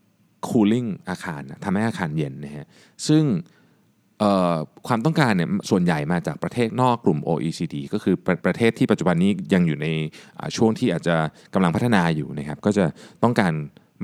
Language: Thai